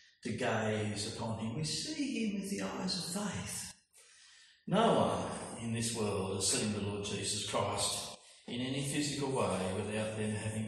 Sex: male